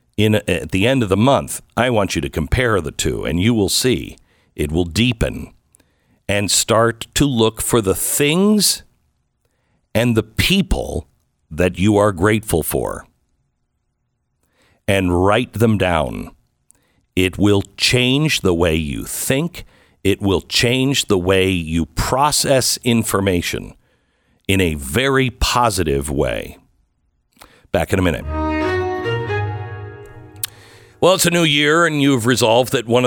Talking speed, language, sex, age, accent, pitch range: 130 wpm, English, male, 60-79, American, 95-130 Hz